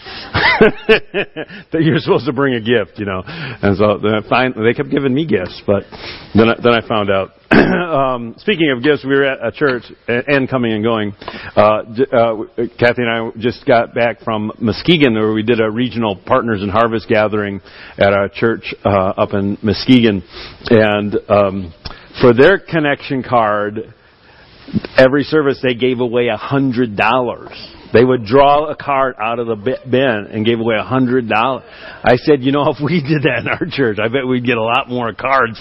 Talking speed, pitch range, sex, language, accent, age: 190 wpm, 115-140 Hz, male, English, American, 50-69